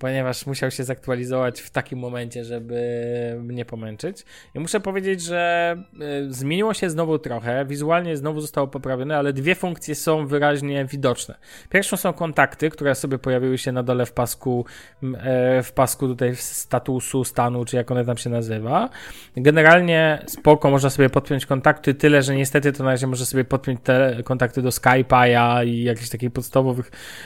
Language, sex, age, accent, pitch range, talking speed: Polish, male, 20-39, native, 130-155 Hz, 165 wpm